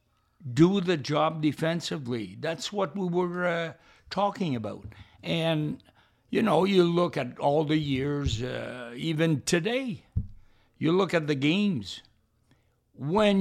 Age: 60-79